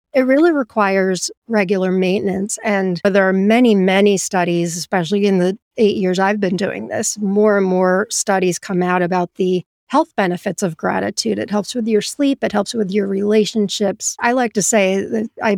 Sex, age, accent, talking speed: female, 40-59, American, 185 wpm